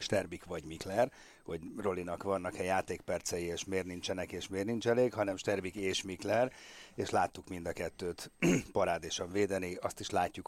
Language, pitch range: Hungarian, 95-115 Hz